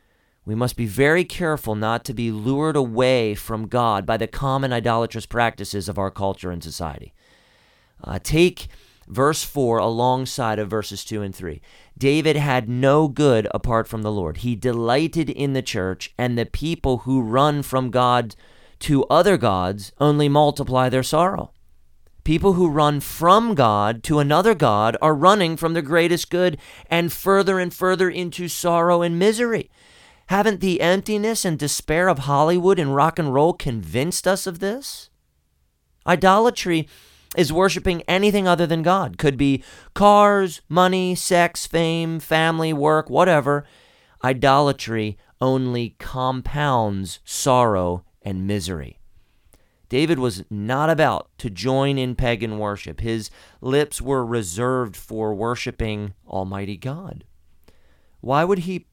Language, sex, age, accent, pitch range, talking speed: English, male, 40-59, American, 110-165 Hz, 140 wpm